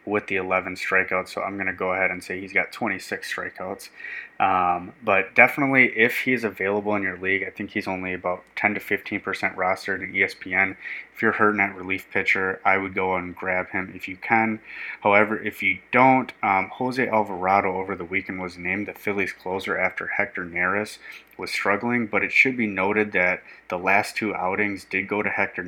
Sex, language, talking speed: male, English, 200 wpm